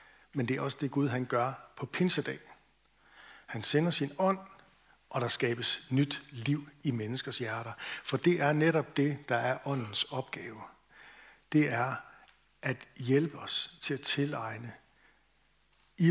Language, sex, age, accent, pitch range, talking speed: Danish, male, 60-79, native, 125-150 Hz, 150 wpm